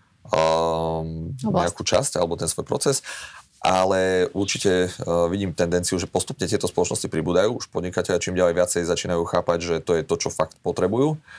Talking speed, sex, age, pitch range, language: 165 wpm, male, 30-49, 80-95 Hz, Slovak